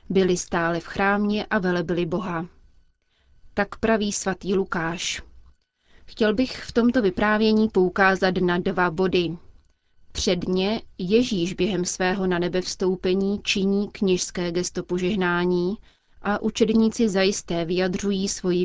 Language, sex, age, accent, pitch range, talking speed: Czech, female, 30-49, native, 180-200 Hz, 115 wpm